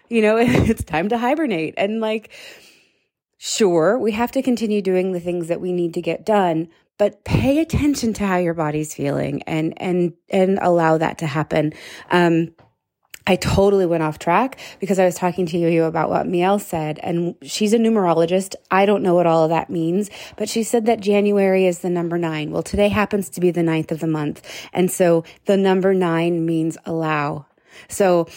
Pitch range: 170-200 Hz